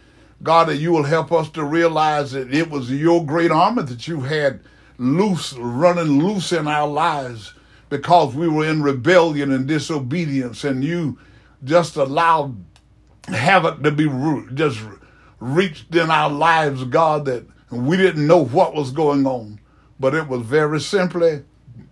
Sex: male